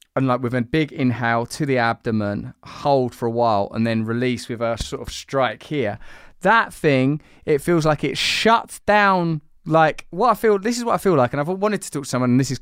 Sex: male